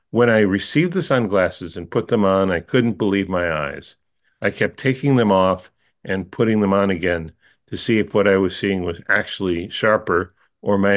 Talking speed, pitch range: 195 wpm, 95-115 Hz